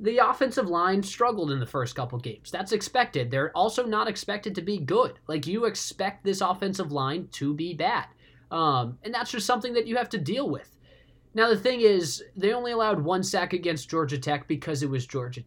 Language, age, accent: English, 20-39, American